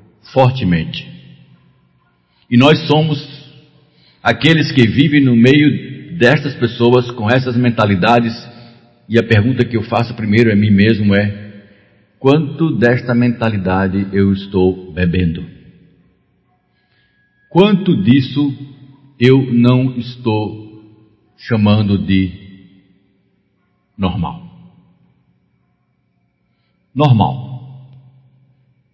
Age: 60-79